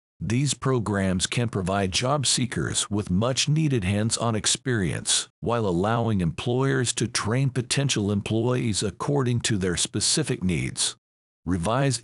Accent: American